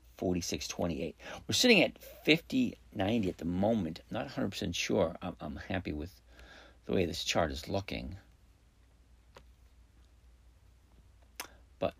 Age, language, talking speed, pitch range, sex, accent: 50-69, English, 105 wpm, 75-90 Hz, male, American